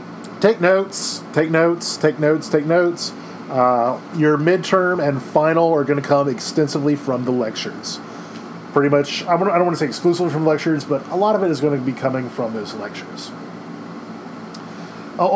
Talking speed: 175 wpm